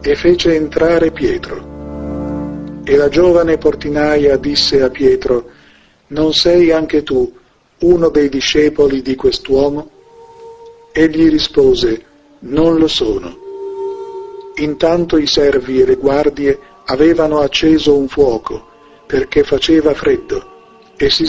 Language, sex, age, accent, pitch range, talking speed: Italian, male, 50-69, native, 140-190 Hz, 115 wpm